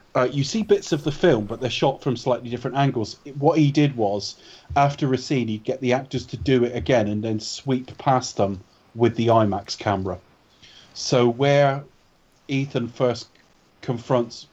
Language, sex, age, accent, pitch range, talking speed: English, male, 30-49, British, 110-130 Hz, 180 wpm